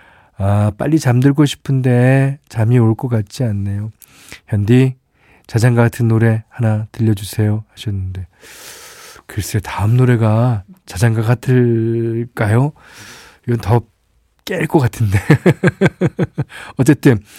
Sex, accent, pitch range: male, native, 105-135 Hz